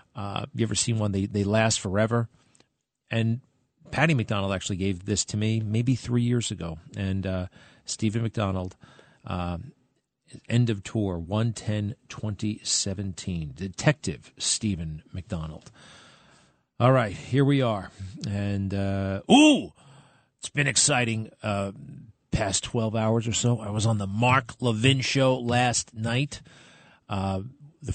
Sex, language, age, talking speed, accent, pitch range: male, English, 40-59, 135 wpm, American, 100-125 Hz